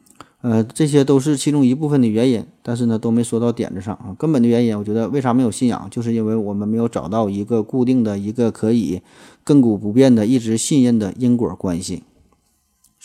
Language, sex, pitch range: Chinese, male, 105-130 Hz